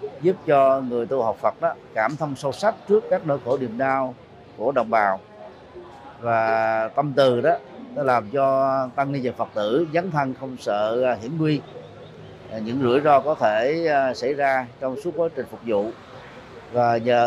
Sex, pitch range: male, 120-150 Hz